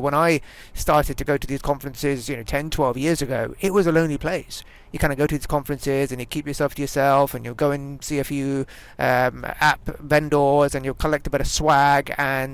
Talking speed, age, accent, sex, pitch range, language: 240 wpm, 30-49, British, male, 130-155 Hz, English